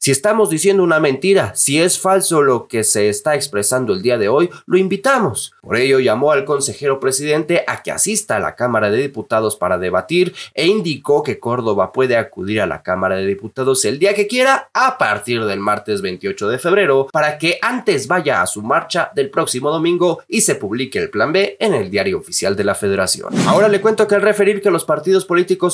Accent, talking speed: Mexican, 210 wpm